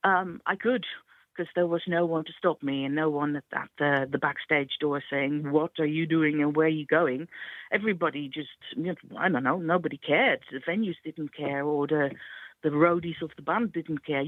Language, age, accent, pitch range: English, 50-69, British, 150-200 Hz